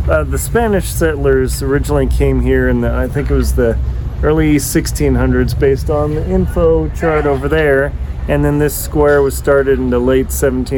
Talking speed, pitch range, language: 180 wpm, 125-155 Hz, English